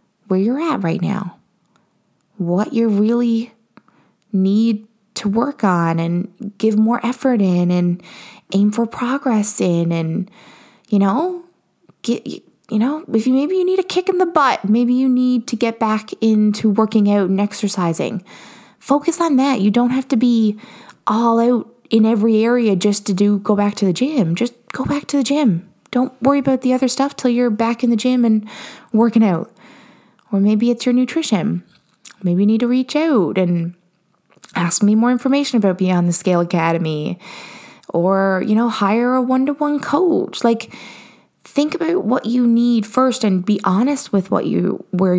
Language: English